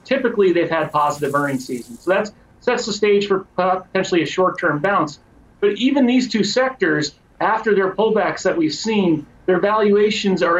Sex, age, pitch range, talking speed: male, 40-59, 160-195 Hz, 170 wpm